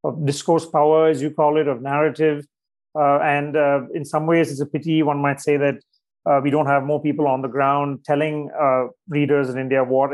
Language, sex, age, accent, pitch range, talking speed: English, male, 30-49, Indian, 140-160 Hz, 220 wpm